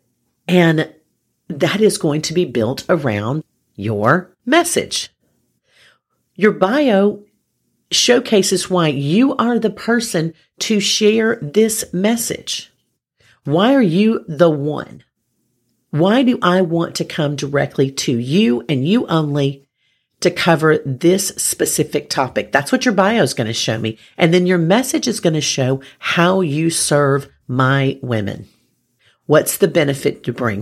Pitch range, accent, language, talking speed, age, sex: 125-185 Hz, American, English, 140 wpm, 40-59, female